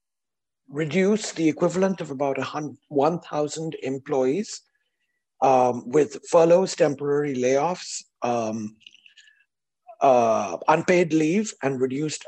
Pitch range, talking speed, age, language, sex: 135-180 Hz, 90 wpm, 60-79, English, male